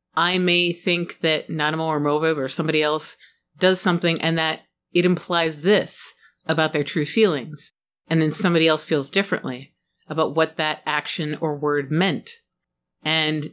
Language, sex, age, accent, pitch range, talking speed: English, female, 30-49, American, 155-185 Hz, 155 wpm